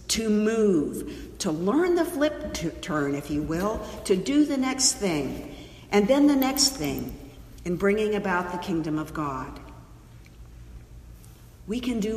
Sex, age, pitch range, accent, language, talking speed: female, 50-69, 145-205 Hz, American, English, 150 wpm